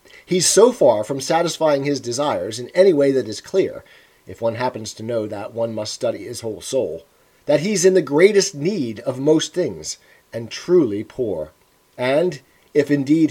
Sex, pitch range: male, 130-175 Hz